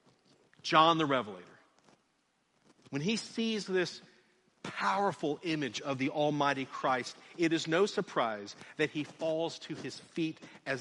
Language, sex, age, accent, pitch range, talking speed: English, male, 50-69, American, 130-175 Hz, 135 wpm